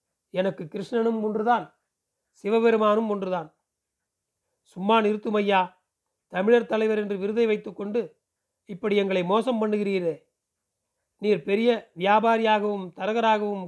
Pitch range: 190-230 Hz